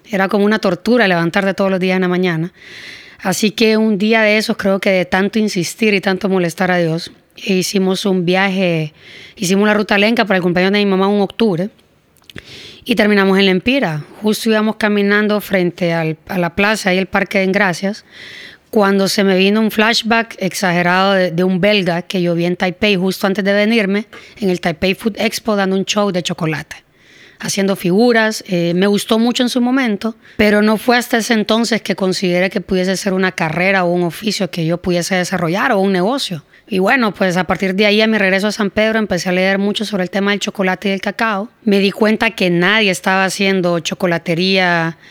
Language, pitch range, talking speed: Spanish, 185-215 Hz, 205 wpm